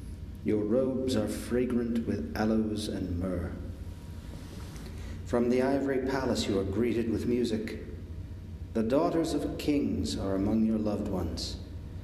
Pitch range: 85-110 Hz